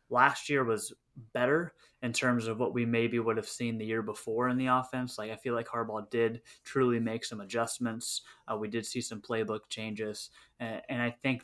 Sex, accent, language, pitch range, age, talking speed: male, American, English, 110-125 Hz, 20-39, 210 wpm